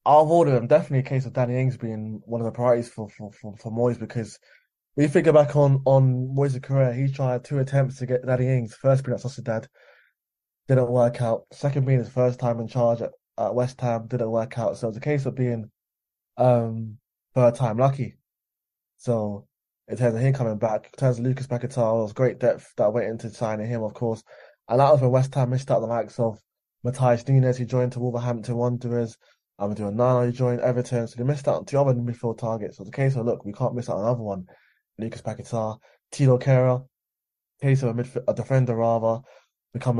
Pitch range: 115-130 Hz